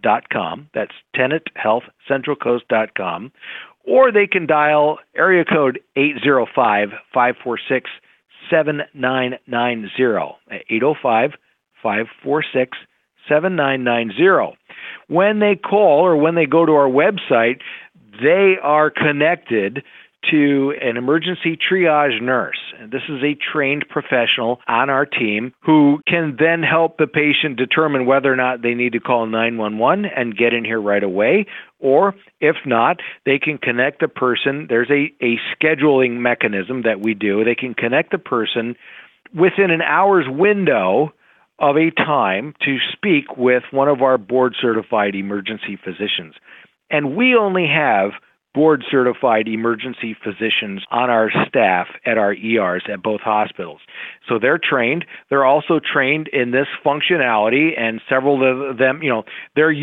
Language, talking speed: English, 130 wpm